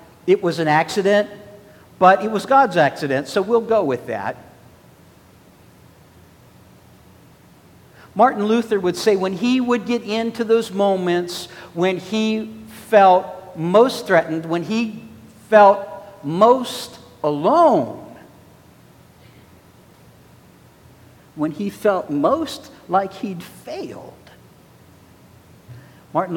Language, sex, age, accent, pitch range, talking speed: English, male, 60-79, American, 160-225 Hz, 100 wpm